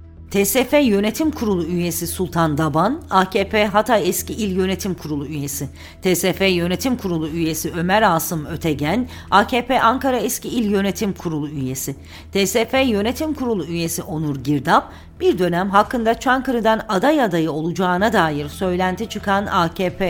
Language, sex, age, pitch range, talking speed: Turkish, female, 40-59, 165-230 Hz, 130 wpm